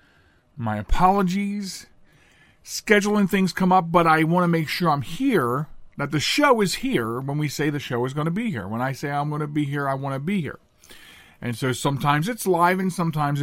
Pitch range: 135-185 Hz